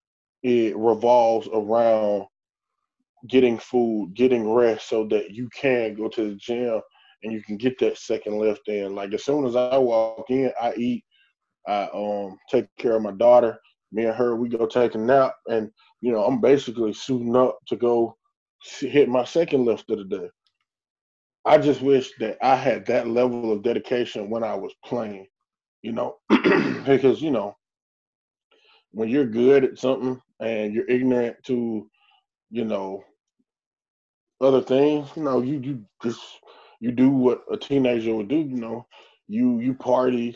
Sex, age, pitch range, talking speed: male, 20-39, 115-140 Hz, 165 wpm